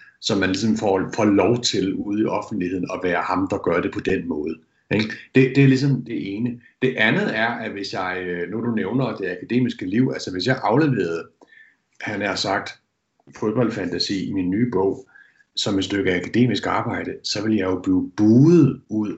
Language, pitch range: Danish, 100-130 Hz